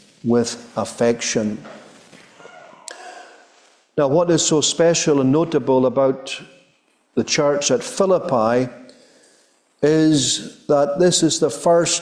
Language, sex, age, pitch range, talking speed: English, male, 50-69, 140-170 Hz, 100 wpm